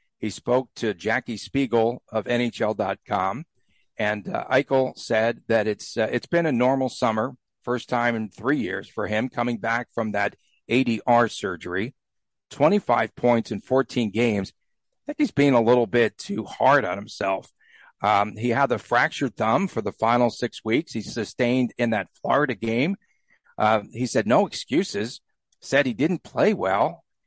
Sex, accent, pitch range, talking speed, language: male, American, 115-145 Hz, 165 wpm, English